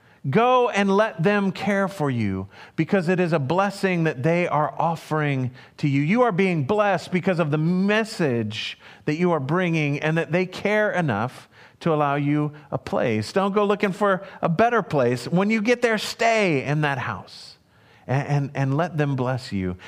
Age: 40-59